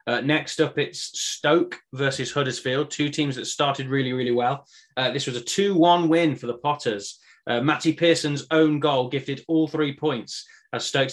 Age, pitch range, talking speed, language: 20-39, 125-155 Hz, 185 wpm, English